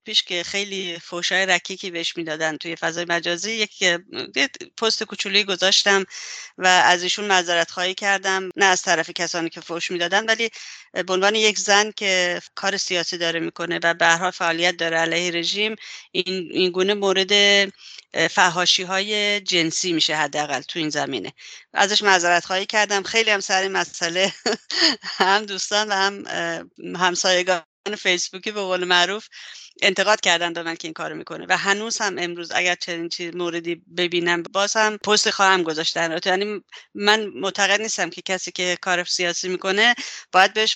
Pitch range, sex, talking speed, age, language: 175-200 Hz, female, 155 wpm, 30-49, English